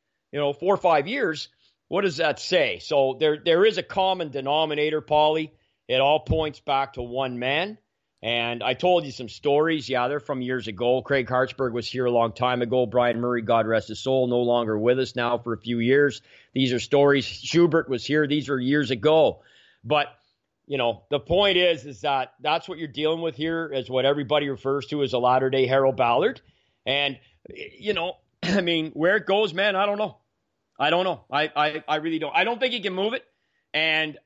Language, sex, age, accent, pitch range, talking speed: English, male, 40-59, American, 130-170 Hz, 210 wpm